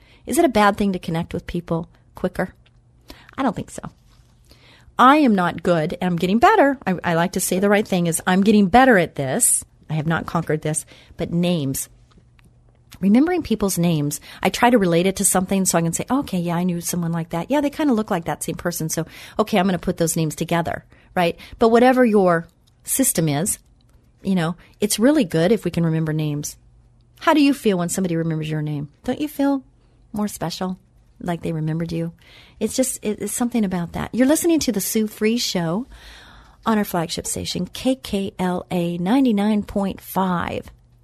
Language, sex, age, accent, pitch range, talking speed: English, female, 40-59, American, 170-230 Hz, 195 wpm